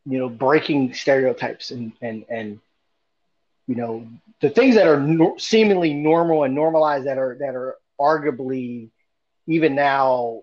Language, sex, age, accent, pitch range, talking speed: English, male, 30-49, American, 115-140 Hz, 145 wpm